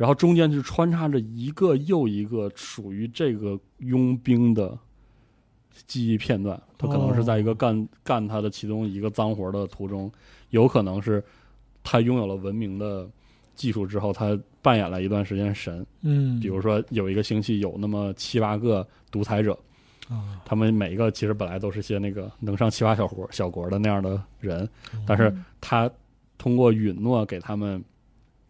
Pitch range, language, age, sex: 105-130 Hz, English, 20-39, male